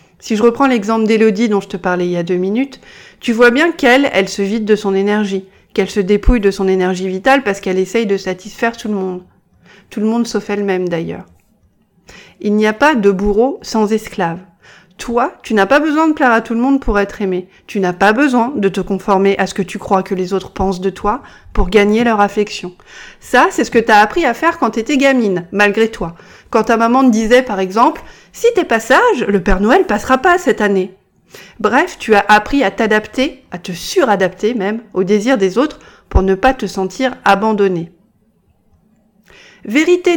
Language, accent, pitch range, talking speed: French, French, 195-245 Hz, 215 wpm